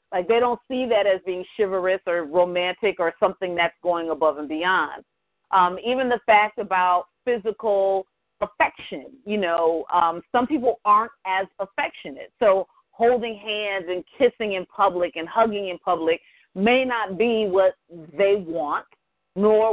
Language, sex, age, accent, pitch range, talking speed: English, female, 40-59, American, 180-225 Hz, 150 wpm